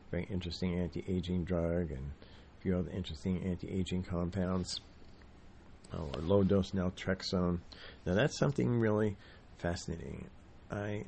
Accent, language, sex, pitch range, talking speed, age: American, English, male, 85-100 Hz, 110 wpm, 50-69